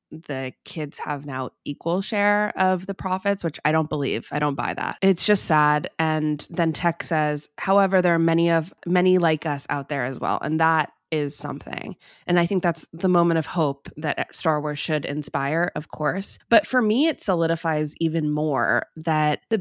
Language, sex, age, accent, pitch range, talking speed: English, female, 20-39, American, 145-170 Hz, 195 wpm